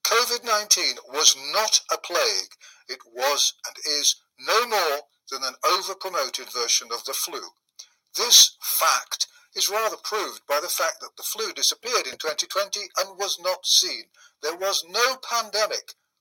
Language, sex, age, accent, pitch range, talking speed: English, male, 50-69, British, 185-260 Hz, 150 wpm